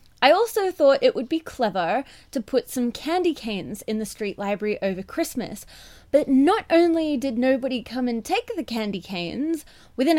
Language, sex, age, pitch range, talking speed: English, female, 20-39, 210-300 Hz, 175 wpm